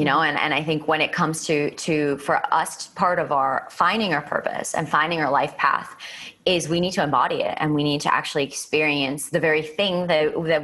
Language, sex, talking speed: English, female, 230 wpm